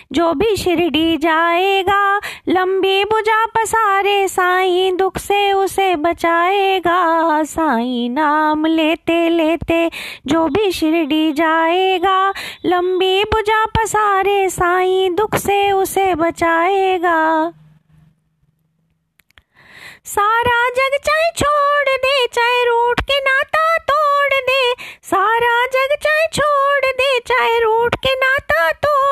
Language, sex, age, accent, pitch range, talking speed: Hindi, female, 20-39, native, 310-400 Hz, 85 wpm